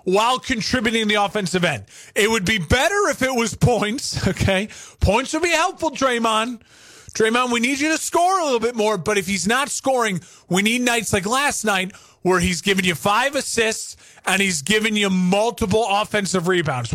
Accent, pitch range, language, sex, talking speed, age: American, 185-245 Hz, English, male, 190 wpm, 30-49